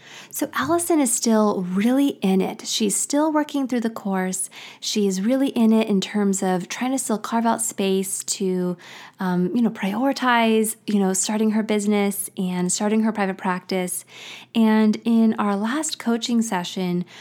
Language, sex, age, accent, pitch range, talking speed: English, female, 20-39, American, 190-230 Hz, 165 wpm